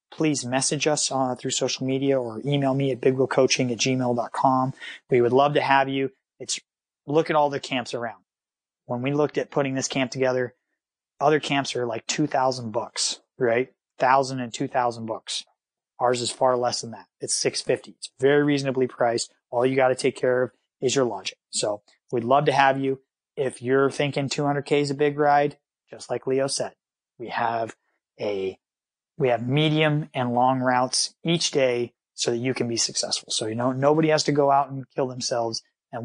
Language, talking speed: English, 190 wpm